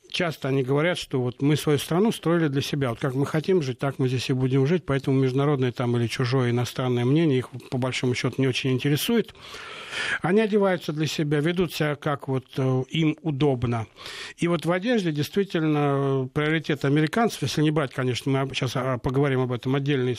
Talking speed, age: 185 wpm, 60-79